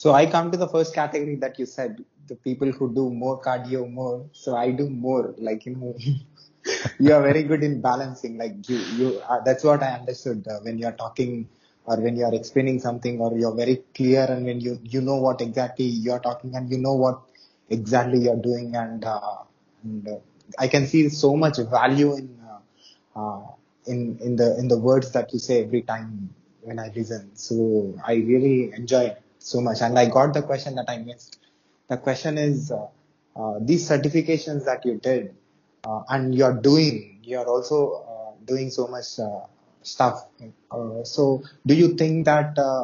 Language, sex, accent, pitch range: English, male, Indian, 120-140 Hz